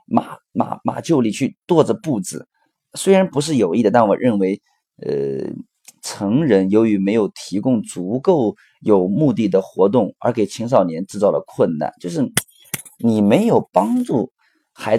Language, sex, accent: Chinese, male, native